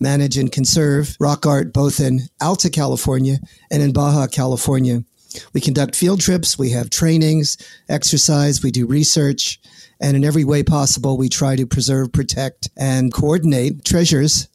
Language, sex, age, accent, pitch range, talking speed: English, male, 40-59, American, 135-155 Hz, 155 wpm